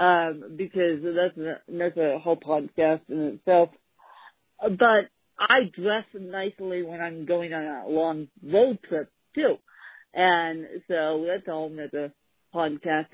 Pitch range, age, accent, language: 165-210 Hz, 50-69, American, English